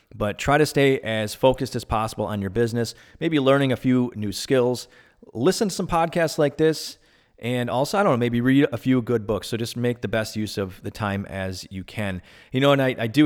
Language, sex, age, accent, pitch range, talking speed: English, male, 30-49, American, 100-125 Hz, 235 wpm